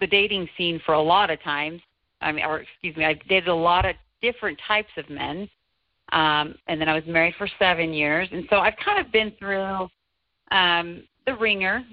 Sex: female